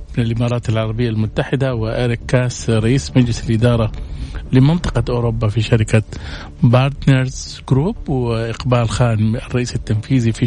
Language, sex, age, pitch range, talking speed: Arabic, male, 50-69, 110-140 Hz, 115 wpm